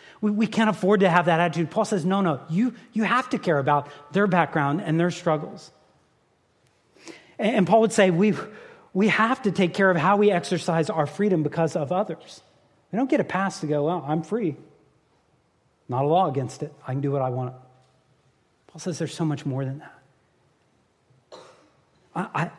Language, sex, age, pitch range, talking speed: English, male, 40-59, 150-195 Hz, 190 wpm